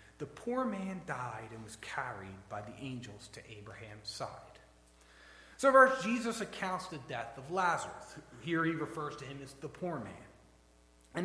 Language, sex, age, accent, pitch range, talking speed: English, male, 30-49, American, 115-185 Hz, 165 wpm